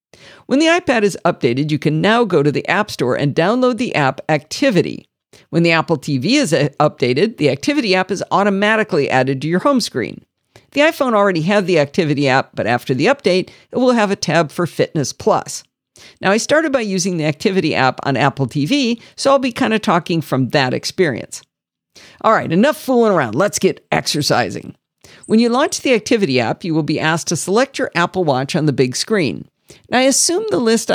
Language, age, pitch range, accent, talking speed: English, 50-69, 145-235 Hz, American, 200 wpm